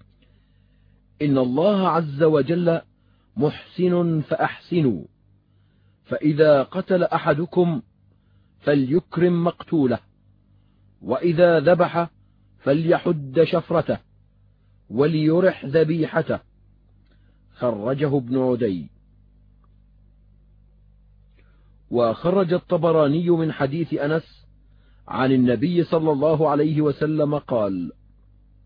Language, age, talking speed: Arabic, 40-59, 65 wpm